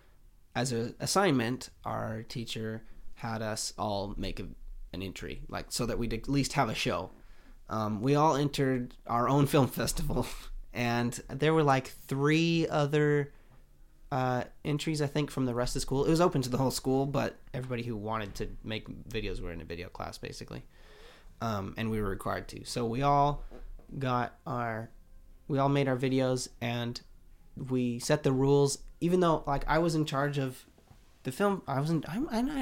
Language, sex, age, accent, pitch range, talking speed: English, male, 30-49, American, 110-145 Hz, 180 wpm